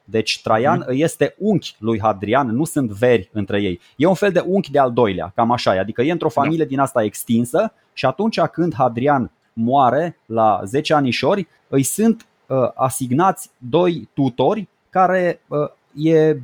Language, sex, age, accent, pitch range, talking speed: Romanian, male, 20-39, native, 110-155 Hz, 160 wpm